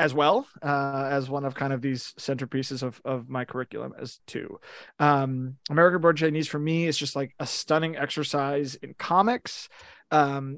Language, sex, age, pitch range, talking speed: English, male, 30-49, 140-175 Hz, 175 wpm